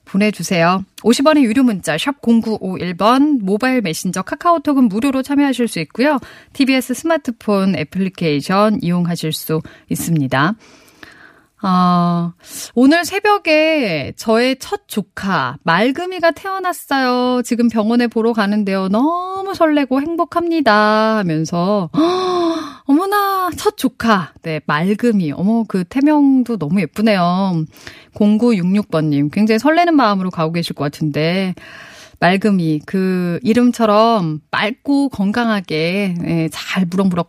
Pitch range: 175-275 Hz